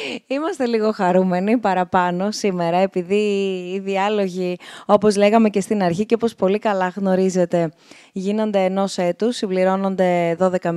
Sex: female